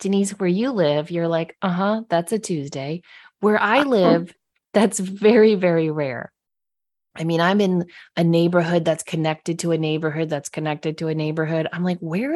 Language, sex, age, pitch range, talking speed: English, female, 30-49, 165-210 Hz, 180 wpm